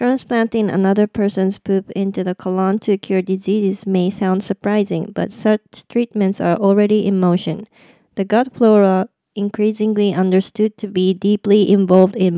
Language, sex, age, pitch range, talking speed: English, female, 20-39, 185-210 Hz, 145 wpm